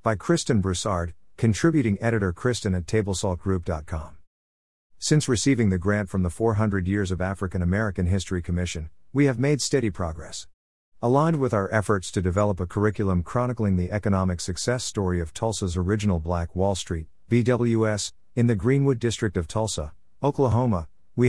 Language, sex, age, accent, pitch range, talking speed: English, male, 50-69, American, 90-115 Hz, 150 wpm